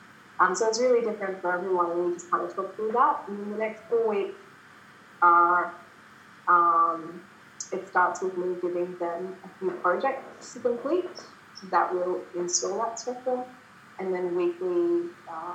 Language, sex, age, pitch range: English, female, 20-39, 175-225 Hz